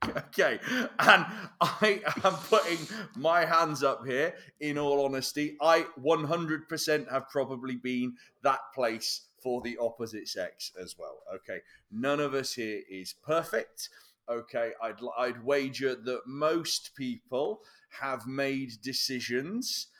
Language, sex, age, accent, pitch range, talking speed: English, male, 30-49, British, 125-160 Hz, 125 wpm